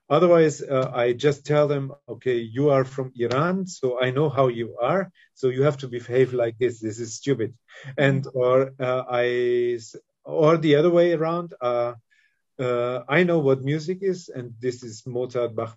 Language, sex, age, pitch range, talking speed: English, male, 40-59, 120-150 Hz, 185 wpm